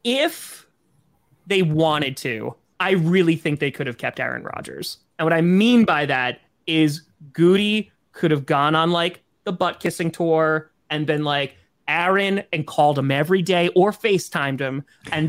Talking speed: 170 wpm